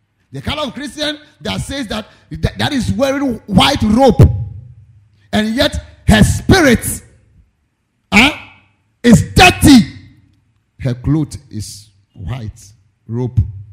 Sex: male